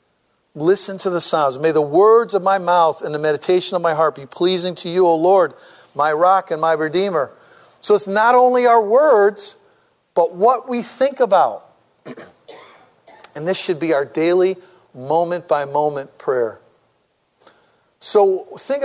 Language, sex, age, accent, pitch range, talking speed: English, male, 50-69, American, 160-245 Hz, 155 wpm